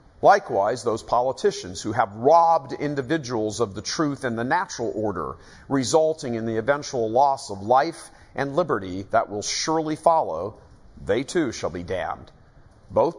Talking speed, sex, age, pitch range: 150 wpm, male, 50-69, 110-155 Hz